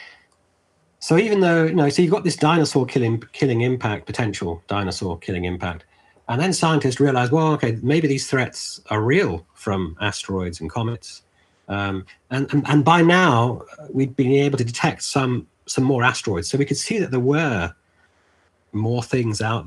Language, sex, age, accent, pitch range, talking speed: English, male, 40-59, British, 95-145 Hz, 175 wpm